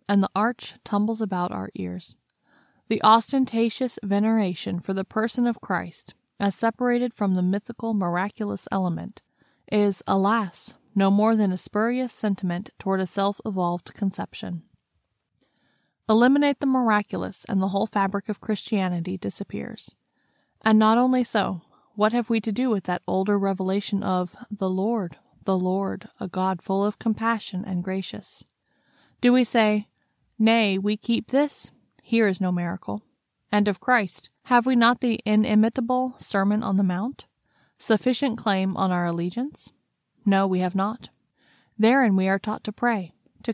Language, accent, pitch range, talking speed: English, American, 190-230 Hz, 150 wpm